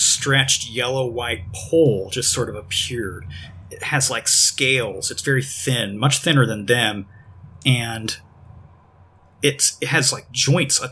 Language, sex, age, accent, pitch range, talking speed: English, male, 30-49, American, 95-130 Hz, 145 wpm